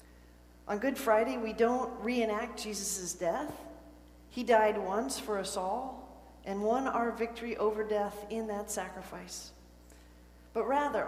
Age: 40-59